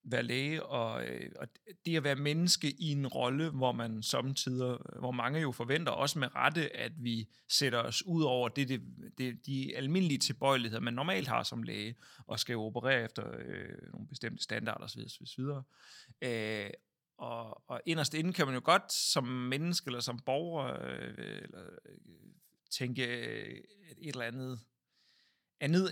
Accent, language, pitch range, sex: native, Danish, 120-160 Hz, male